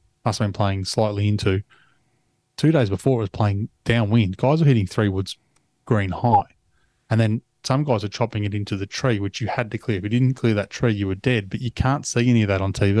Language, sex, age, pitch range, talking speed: English, male, 20-39, 100-125 Hz, 245 wpm